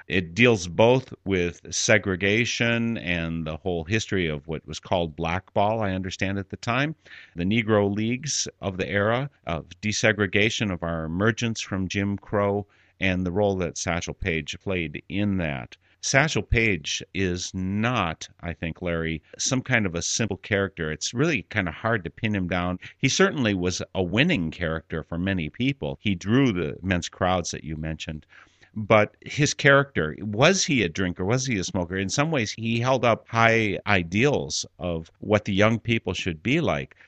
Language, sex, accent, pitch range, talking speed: English, male, American, 85-115 Hz, 175 wpm